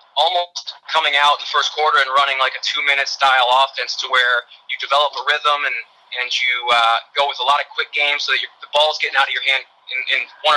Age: 20-39